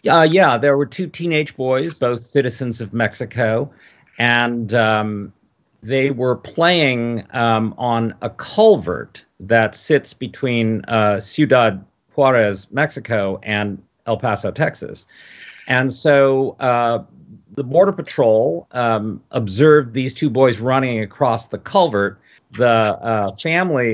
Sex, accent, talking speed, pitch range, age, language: male, American, 125 wpm, 105-135 Hz, 50-69, English